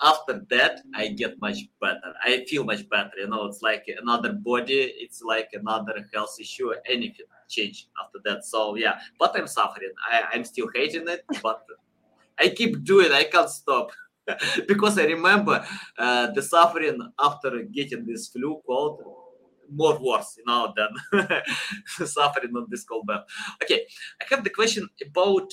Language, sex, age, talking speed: English, male, 20-39, 160 wpm